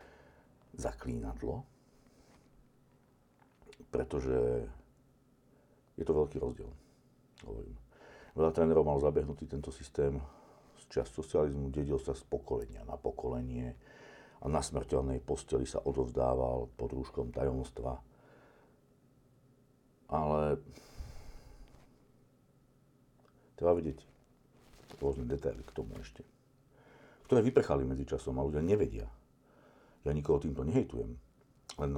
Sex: male